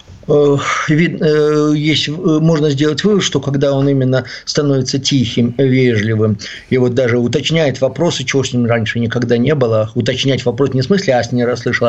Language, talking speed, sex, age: Russian, 160 wpm, male, 50-69